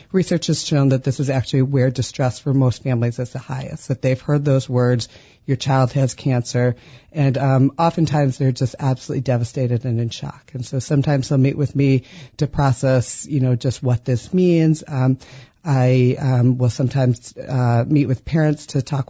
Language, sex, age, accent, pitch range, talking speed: English, female, 40-59, American, 130-150 Hz, 190 wpm